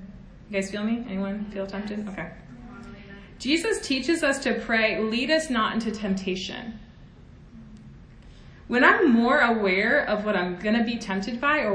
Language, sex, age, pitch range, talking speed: English, female, 20-39, 190-250 Hz, 160 wpm